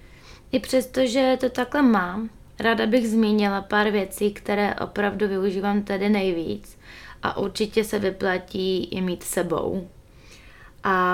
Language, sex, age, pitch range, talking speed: Czech, female, 20-39, 165-205 Hz, 130 wpm